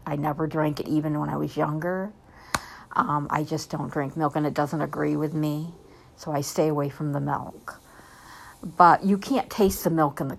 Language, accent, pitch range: English, American, 145-165 Hz